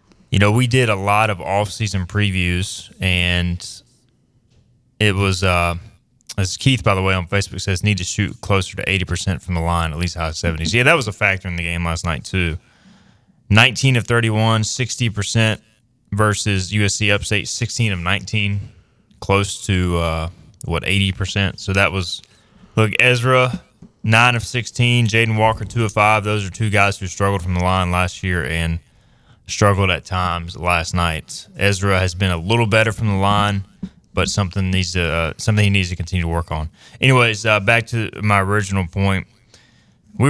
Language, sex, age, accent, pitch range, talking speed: English, male, 20-39, American, 95-115 Hz, 180 wpm